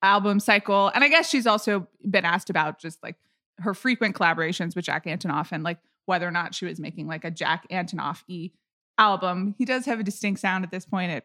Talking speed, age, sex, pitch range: 220 wpm, 20-39, female, 190-255 Hz